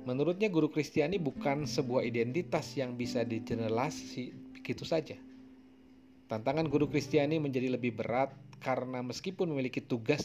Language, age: Indonesian, 40-59